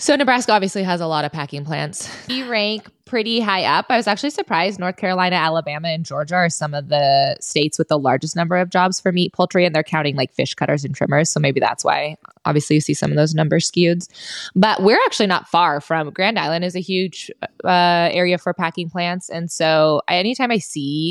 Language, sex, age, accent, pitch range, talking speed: English, female, 20-39, American, 155-195 Hz, 220 wpm